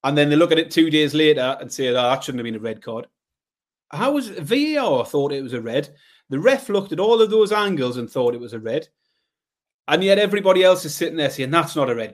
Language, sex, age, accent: English, male, 30-49, British